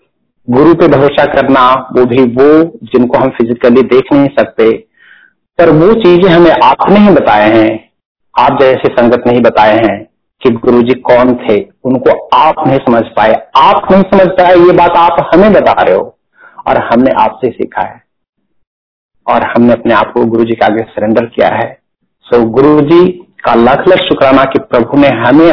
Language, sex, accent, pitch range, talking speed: Hindi, male, native, 120-160 Hz, 180 wpm